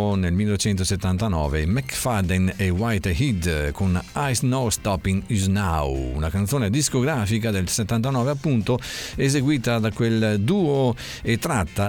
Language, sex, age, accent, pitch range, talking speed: Italian, male, 50-69, native, 95-130 Hz, 115 wpm